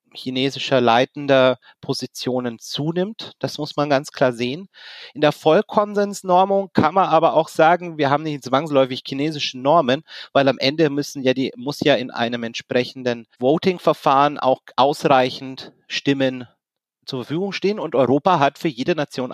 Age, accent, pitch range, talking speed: 30-49, German, 130-165 Hz, 150 wpm